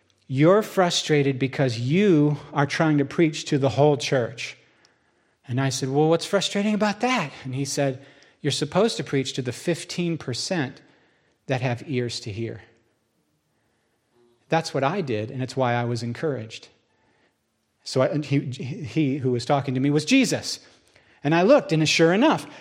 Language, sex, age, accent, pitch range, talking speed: English, male, 40-59, American, 125-165 Hz, 160 wpm